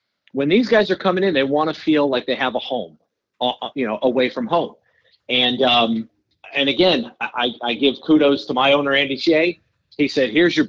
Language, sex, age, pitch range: English, male, 40-59, 130-160 Hz